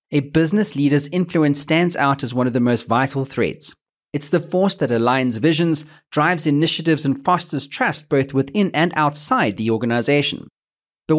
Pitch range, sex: 130-170 Hz, male